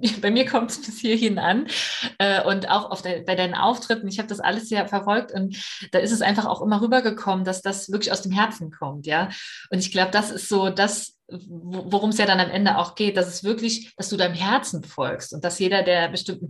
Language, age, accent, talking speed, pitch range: German, 30-49, German, 235 wpm, 185-225 Hz